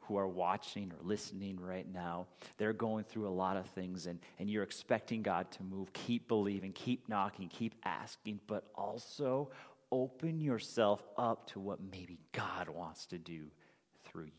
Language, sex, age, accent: English, male, 40-59, American